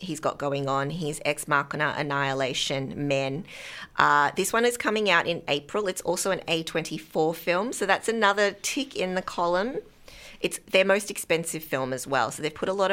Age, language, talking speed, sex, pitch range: 30-49, English, 190 wpm, female, 145-180 Hz